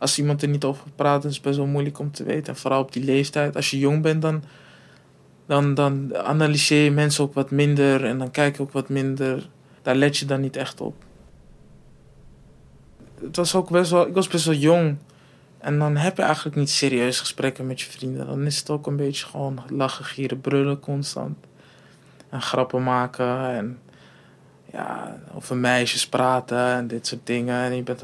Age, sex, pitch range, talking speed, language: 20-39, male, 130-150 Hz, 190 wpm, Dutch